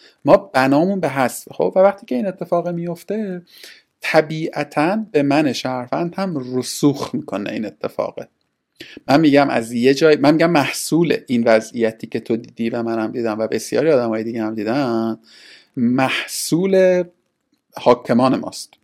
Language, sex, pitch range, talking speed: Persian, male, 120-155 Hz, 145 wpm